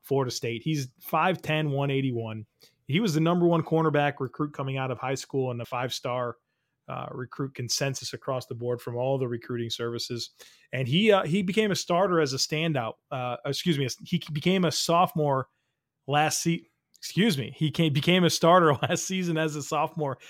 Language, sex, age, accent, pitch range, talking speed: English, male, 30-49, American, 135-165 Hz, 185 wpm